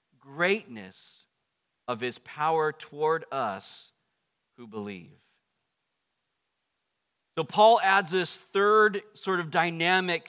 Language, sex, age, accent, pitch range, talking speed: English, male, 40-59, American, 160-240 Hz, 95 wpm